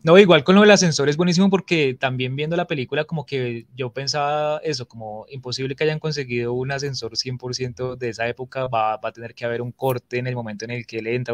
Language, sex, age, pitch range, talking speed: Spanish, male, 20-39, 120-150 Hz, 240 wpm